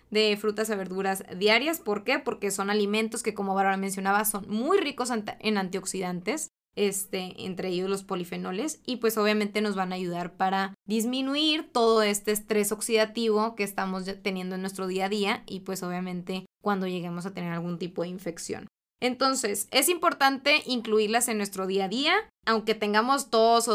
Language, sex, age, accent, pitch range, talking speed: Spanish, female, 20-39, Mexican, 195-250 Hz, 175 wpm